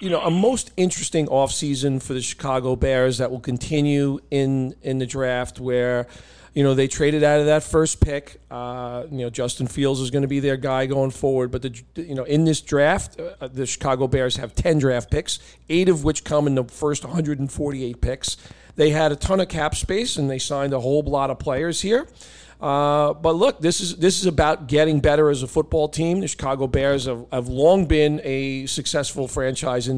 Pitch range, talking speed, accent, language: 130-155 Hz, 210 wpm, American, English